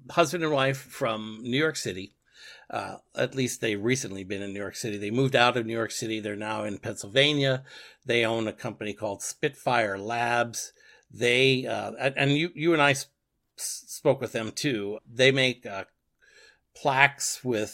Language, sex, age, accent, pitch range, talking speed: English, male, 50-69, American, 105-135 Hz, 175 wpm